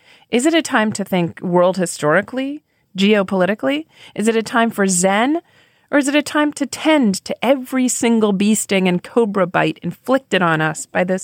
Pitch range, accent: 185-275 Hz, American